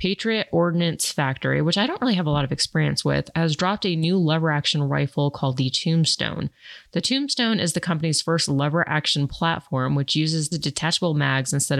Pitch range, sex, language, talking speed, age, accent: 140-170 Hz, female, English, 185 wpm, 30-49, American